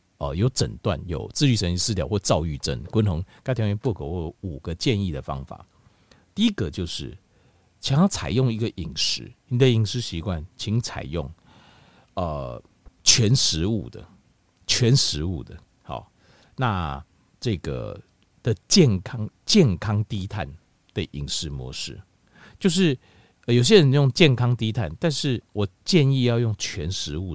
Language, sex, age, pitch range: Chinese, male, 50-69, 90-130 Hz